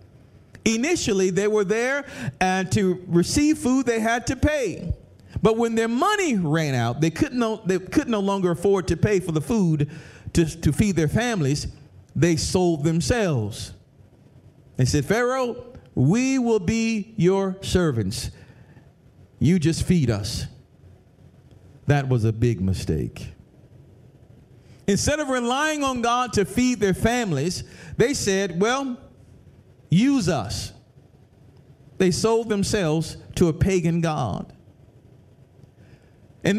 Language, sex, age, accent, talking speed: English, male, 50-69, American, 125 wpm